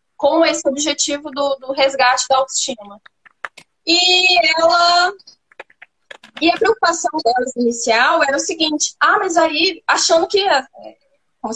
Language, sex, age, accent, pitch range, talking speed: Portuguese, female, 10-29, Brazilian, 245-315 Hz, 130 wpm